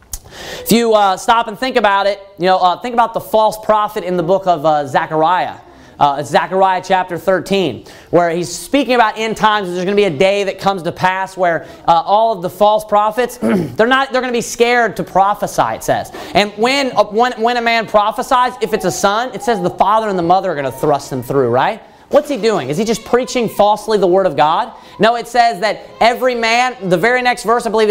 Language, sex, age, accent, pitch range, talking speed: English, male, 30-49, American, 175-230 Hz, 235 wpm